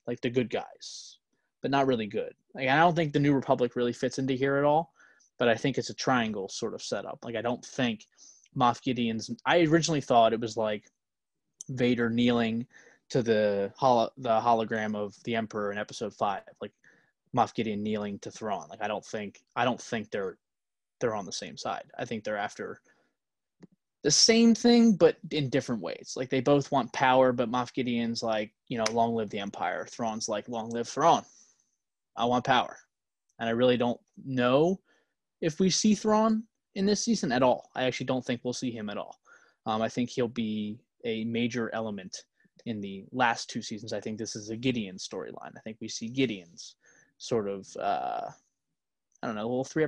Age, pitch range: 20-39, 115-140 Hz